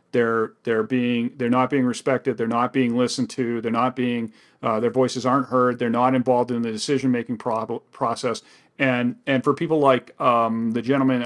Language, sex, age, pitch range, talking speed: English, male, 40-59, 120-140 Hz, 190 wpm